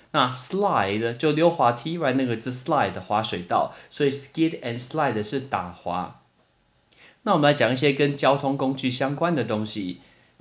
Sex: male